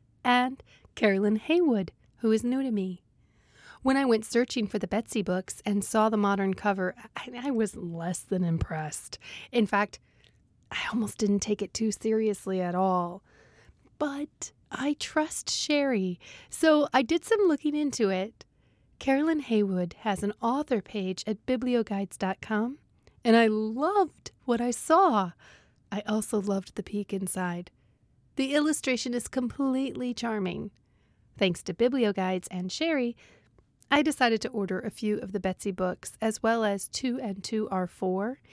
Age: 30-49